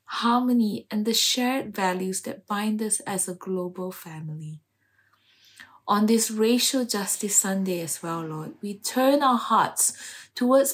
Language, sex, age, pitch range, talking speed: English, female, 20-39, 185-240 Hz, 140 wpm